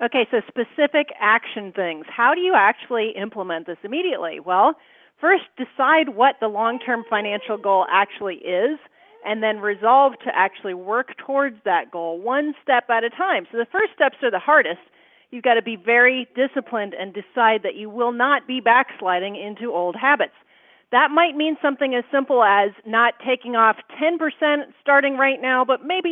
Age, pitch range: 40-59, 210-275 Hz